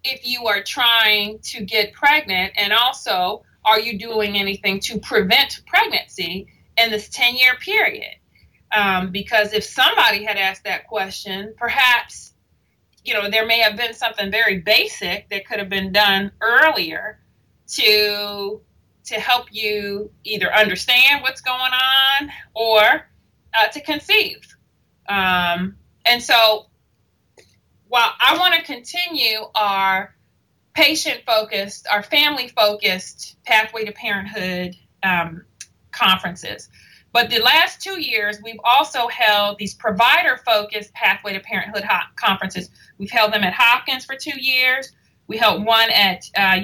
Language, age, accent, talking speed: English, 30-49, American, 135 wpm